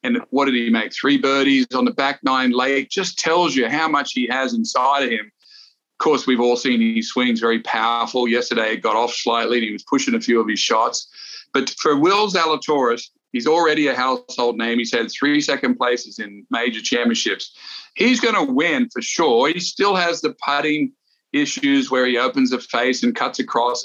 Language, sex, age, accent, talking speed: English, male, 50-69, American, 205 wpm